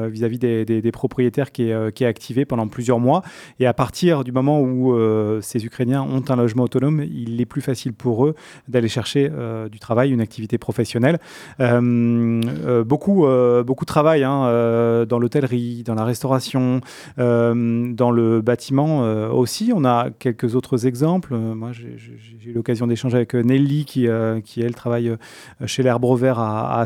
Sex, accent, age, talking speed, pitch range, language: male, French, 30-49, 185 wpm, 115-135 Hz, French